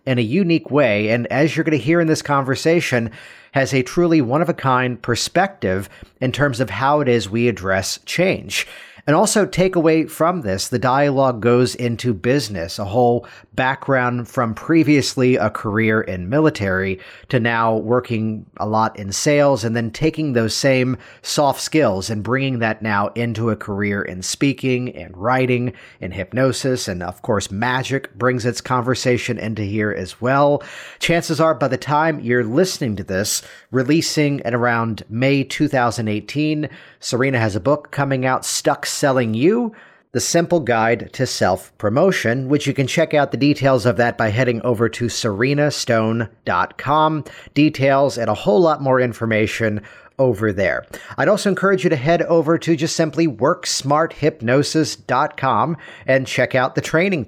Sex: male